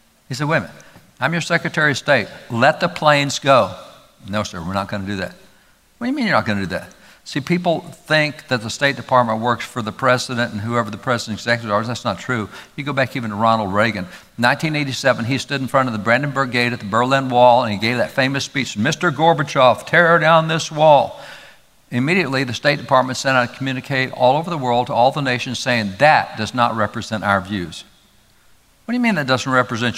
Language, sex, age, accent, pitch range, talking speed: English, male, 60-79, American, 115-145 Hz, 225 wpm